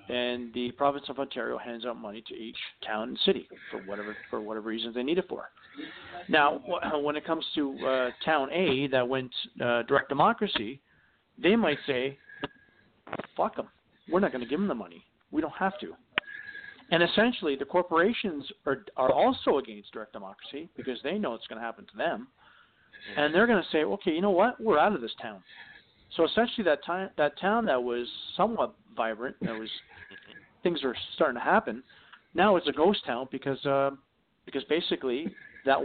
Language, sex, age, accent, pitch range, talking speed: English, male, 50-69, American, 125-160 Hz, 185 wpm